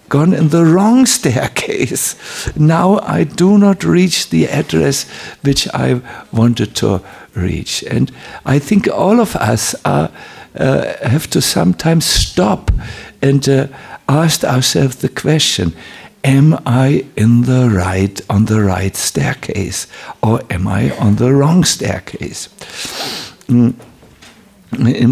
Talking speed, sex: 125 wpm, male